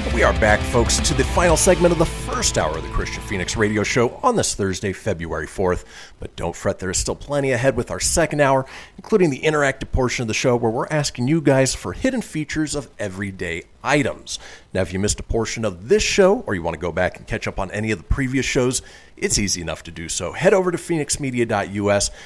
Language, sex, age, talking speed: English, male, 40-59, 235 wpm